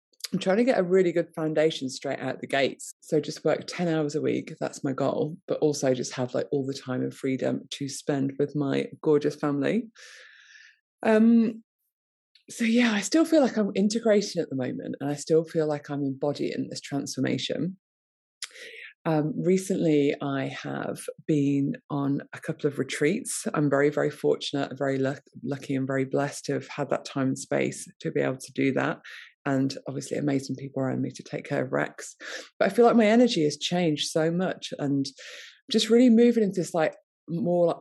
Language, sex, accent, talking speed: English, female, British, 190 wpm